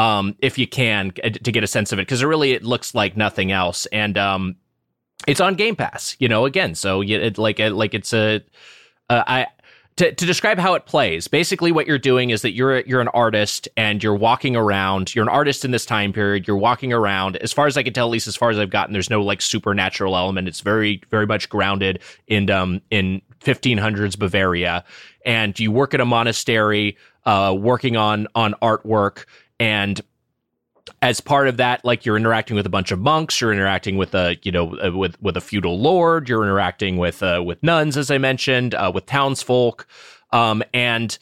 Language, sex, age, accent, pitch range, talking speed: English, male, 30-49, American, 100-125 Hz, 205 wpm